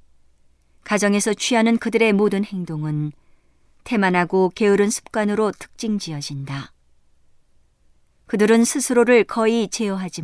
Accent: native